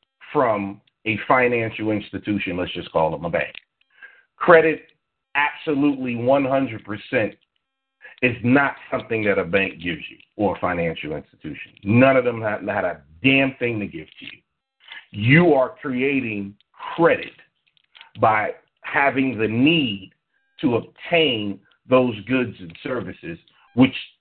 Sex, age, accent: male, 50-69, American